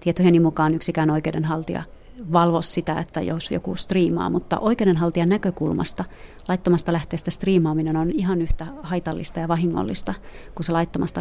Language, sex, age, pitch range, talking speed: Finnish, female, 30-49, 160-175 Hz, 135 wpm